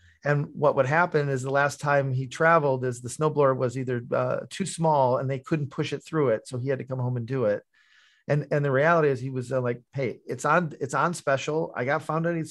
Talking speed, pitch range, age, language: 260 wpm, 130-155 Hz, 40-59, English